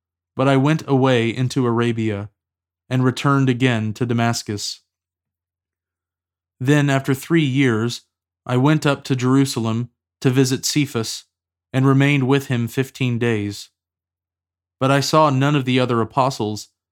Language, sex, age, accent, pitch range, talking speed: English, male, 20-39, American, 100-135 Hz, 130 wpm